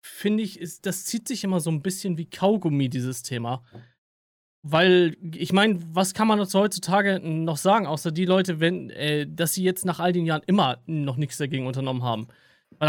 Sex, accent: male, German